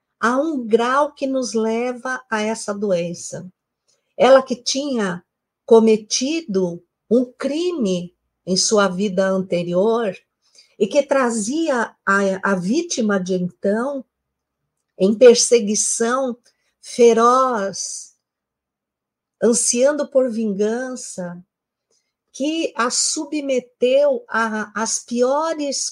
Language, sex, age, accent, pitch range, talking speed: Portuguese, female, 50-69, Brazilian, 190-250 Hz, 90 wpm